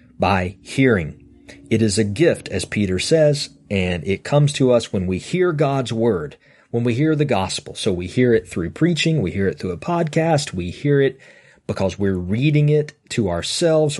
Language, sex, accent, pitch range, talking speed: English, male, American, 100-145 Hz, 195 wpm